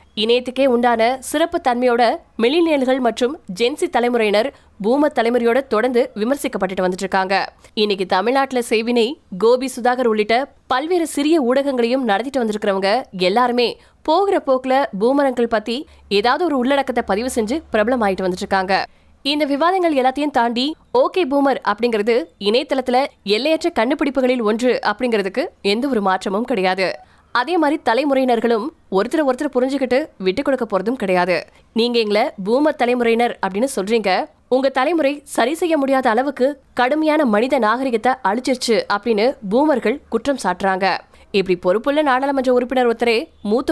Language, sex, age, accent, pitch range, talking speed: Tamil, female, 20-39, native, 210-270 Hz, 40 wpm